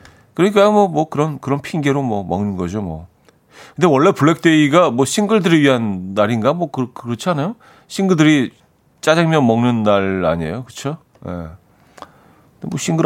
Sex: male